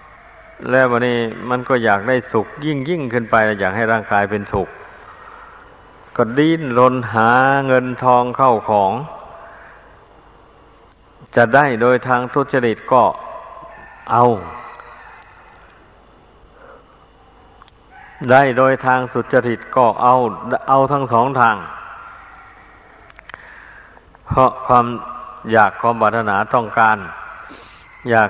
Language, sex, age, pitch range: Thai, male, 60-79, 110-125 Hz